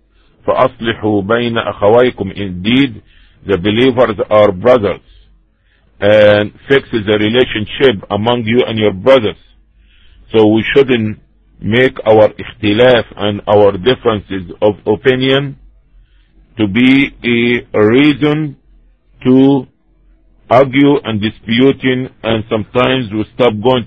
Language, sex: English, male